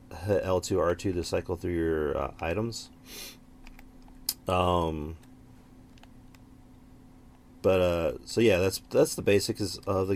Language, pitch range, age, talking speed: English, 85-120 Hz, 30-49, 120 wpm